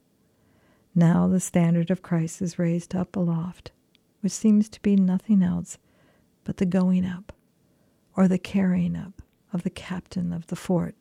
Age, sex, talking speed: 50-69, female, 160 wpm